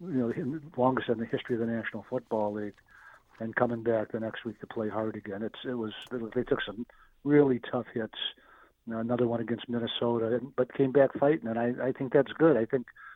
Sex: male